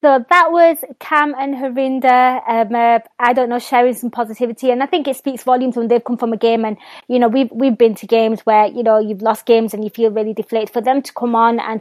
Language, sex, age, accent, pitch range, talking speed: English, female, 20-39, British, 225-260 Hz, 260 wpm